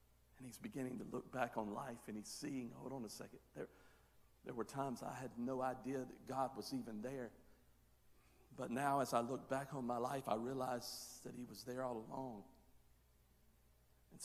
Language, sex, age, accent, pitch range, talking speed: English, male, 50-69, American, 125-180 Hz, 195 wpm